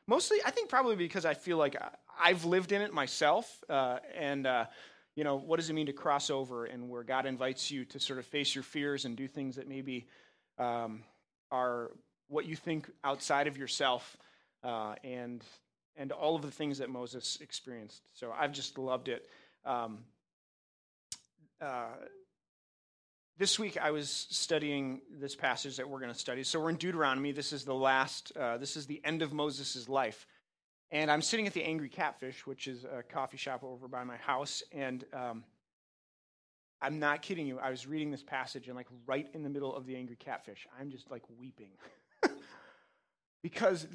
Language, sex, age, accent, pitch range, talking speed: English, male, 30-49, American, 130-160 Hz, 185 wpm